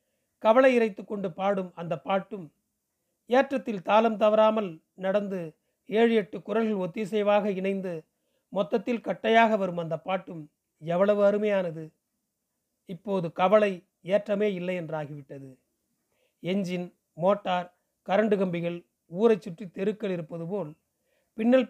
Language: Tamil